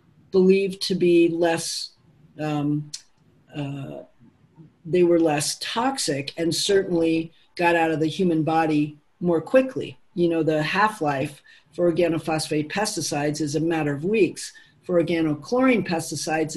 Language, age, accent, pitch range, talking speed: English, 50-69, American, 155-195 Hz, 125 wpm